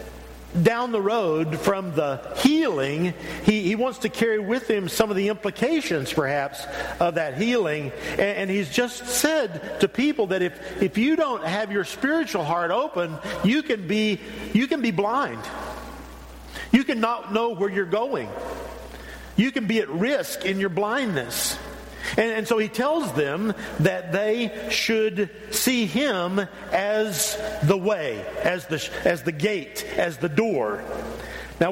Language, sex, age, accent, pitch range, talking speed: English, male, 50-69, American, 170-220 Hz, 155 wpm